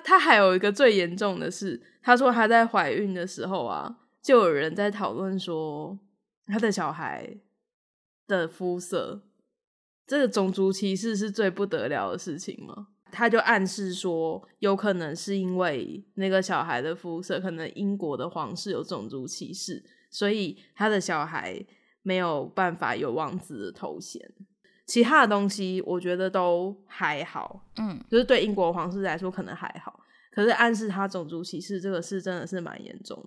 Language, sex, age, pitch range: Chinese, female, 10-29, 180-210 Hz